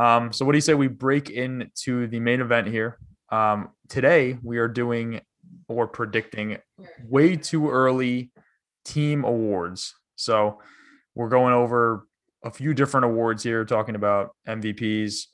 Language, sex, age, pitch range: English, male, 20-39, 105-125 Hz